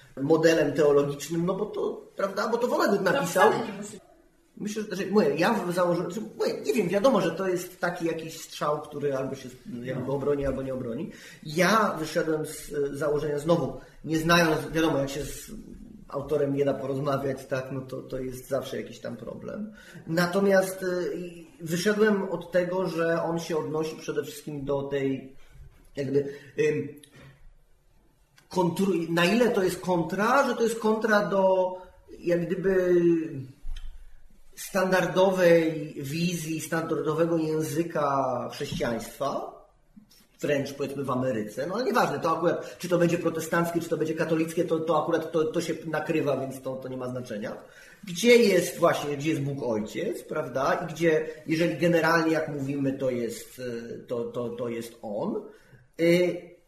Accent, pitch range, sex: native, 140-180 Hz, male